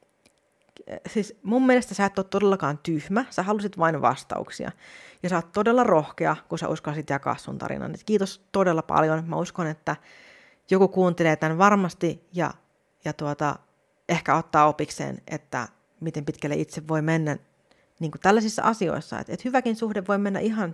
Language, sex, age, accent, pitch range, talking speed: Finnish, female, 30-49, native, 155-205 Hz, 155 wpm